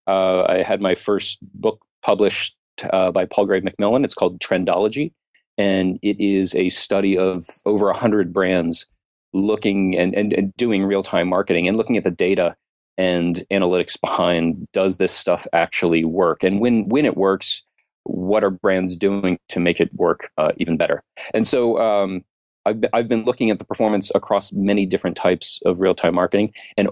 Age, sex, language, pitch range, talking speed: 40-59, male, English, 90-105 Hz, 180 wpm